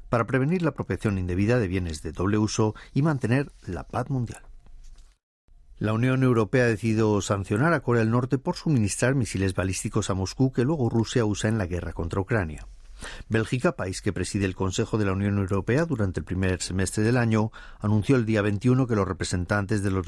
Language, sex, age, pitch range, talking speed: Spanish, male, 50-69, 95-120 Hz, 195 wpm